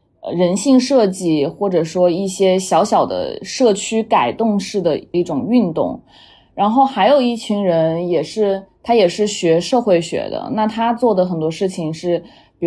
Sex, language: female, Chinese